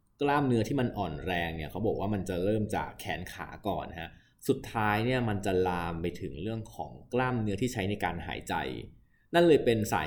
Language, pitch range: Thai, 90-120 Hz